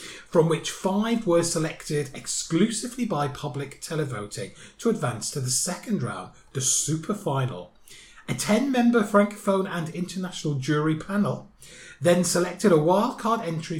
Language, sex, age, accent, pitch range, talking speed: English, male, 30-49, British, 125-180 Hz, 130 wpm